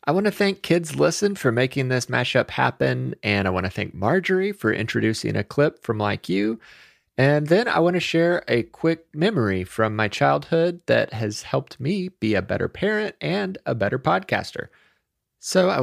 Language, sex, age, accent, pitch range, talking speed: English, male, 30-49, American, 105-160 Hz, 190 wpm